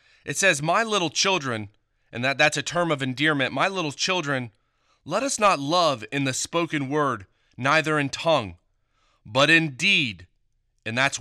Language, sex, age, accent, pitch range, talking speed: English, male, 30-49, American, 115-160 Hz, 160 wpm